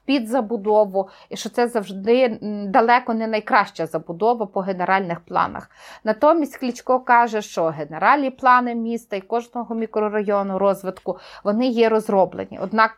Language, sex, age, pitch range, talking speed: Ukrainian, female, 30-49, 195-240 Hz, 130 wpm